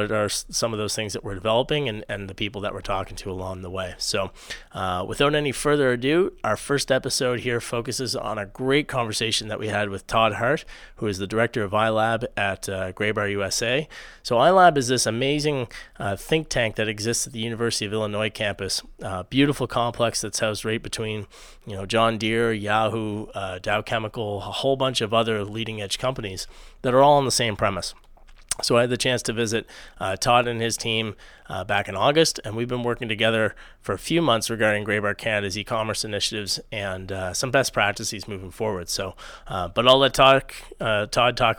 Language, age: English, 30-49